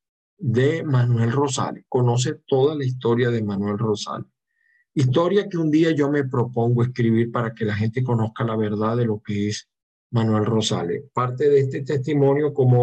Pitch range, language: 110-135 Hz, Spanish